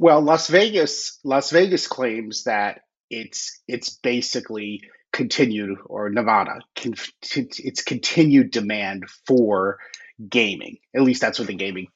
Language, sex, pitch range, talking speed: English, male, 115-150 Hz, 120 wpm